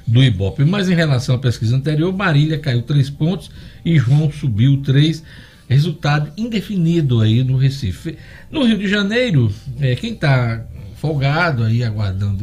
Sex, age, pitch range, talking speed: male, 60-79, 120-155 Hz, 150 wpm